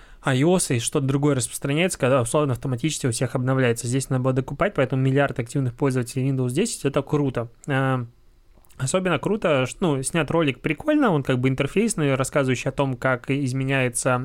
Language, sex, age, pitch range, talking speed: Russian, male, 20-39, 130-150 Hz, 165 wpm